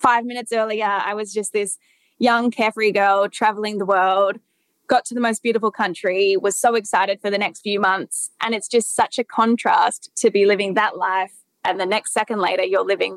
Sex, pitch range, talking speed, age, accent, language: female, 200-230 Hz, 205 wpm, 10-29, Australian, English